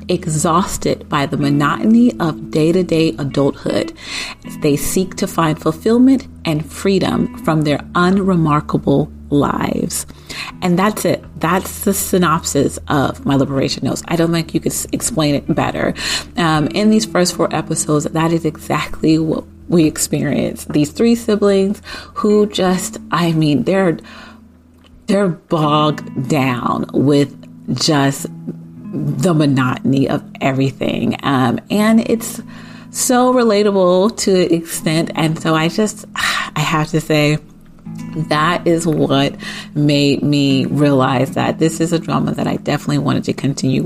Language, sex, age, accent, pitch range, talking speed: English, female, 30-49, American, 140-185 Hz, 135 wpm